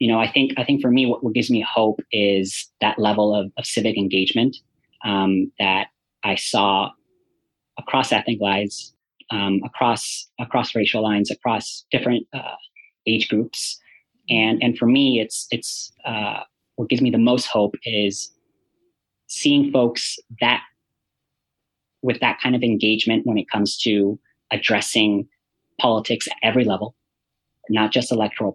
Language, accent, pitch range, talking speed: English, American, 100-120 Hz, 145 wpm